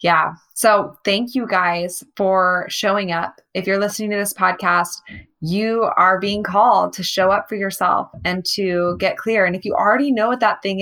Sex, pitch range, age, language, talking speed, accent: female, 175-215 Hz, 20-39, English, 195 wpm, American